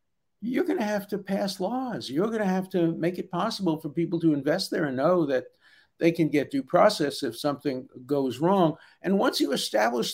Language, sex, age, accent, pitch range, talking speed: English, male, 50-69, American, 140-185 Hz, 215 wpm